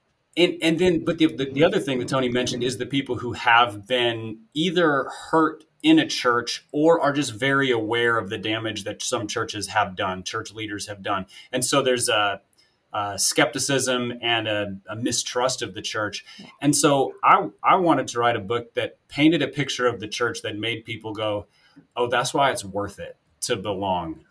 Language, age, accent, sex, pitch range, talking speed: English, 30-49, American, male, 115-140 Hz, 200 wpm